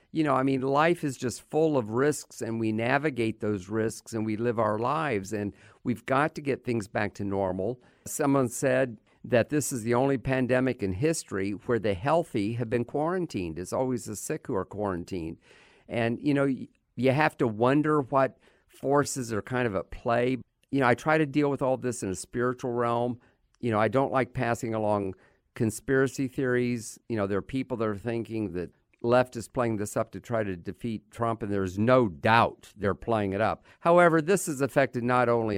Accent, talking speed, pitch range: American, 205 wpm, 110-135 Hz